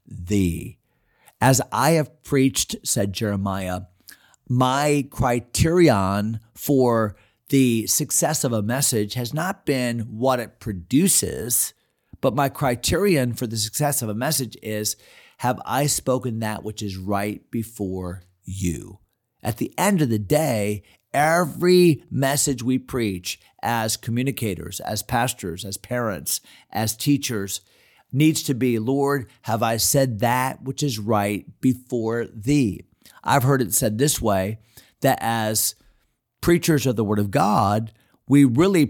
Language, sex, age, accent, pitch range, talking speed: English, male, 40-59, American, 105-140 Hz, 135 wpm